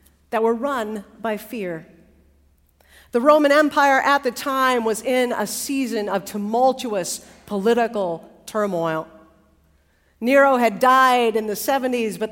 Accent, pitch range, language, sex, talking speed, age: American, 145-235 Hz, English, female, 125 wpm, 50-69